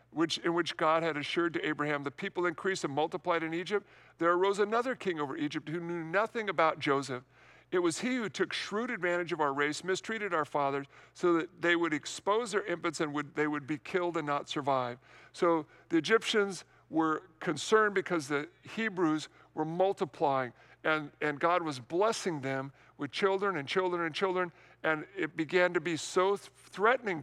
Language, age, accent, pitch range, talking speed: English, 50-69, American, 145-185 Hz, 180 wpm